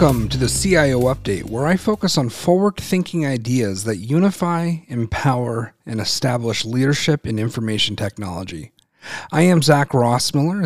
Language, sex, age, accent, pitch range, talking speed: English, male, 40-59, American, 120-170 Hz, 135 wpm